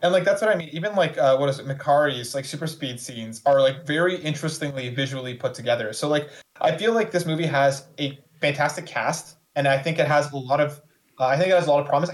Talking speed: 255 wpm